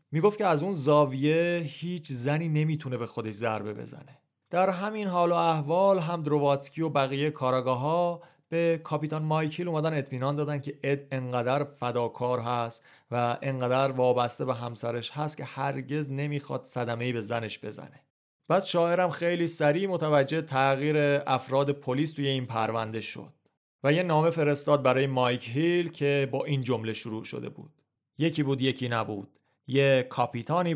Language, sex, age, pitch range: Persian, male, 30-49, 125-160 Hz